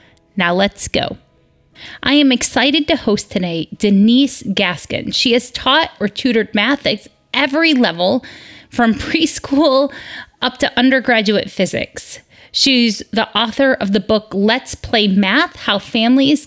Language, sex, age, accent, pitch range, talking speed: English, female, 30-49, American, 195-255 Hz, 135 wpm